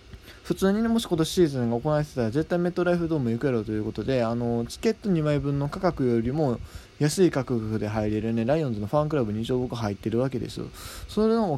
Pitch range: 115-180 Hz